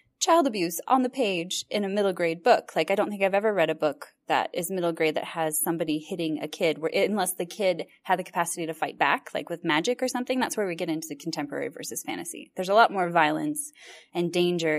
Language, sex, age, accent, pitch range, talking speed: English, female, 20-39, American, 165-220 Hz, 250 wpm